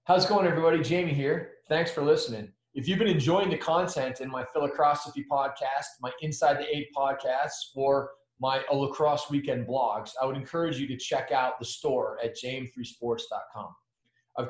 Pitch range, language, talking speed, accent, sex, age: 120-145 Hz, English, 175 wpm, American, male, 30-49